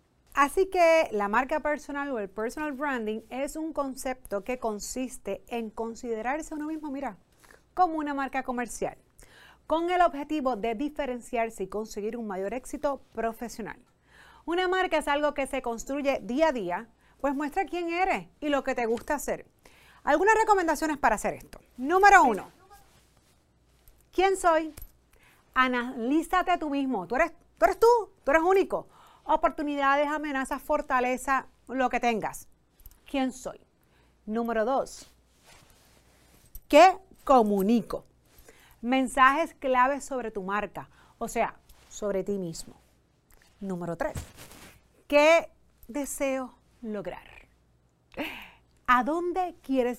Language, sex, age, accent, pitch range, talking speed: Spanish, female, 30-49, American, 220-305 Hz, 125 wpm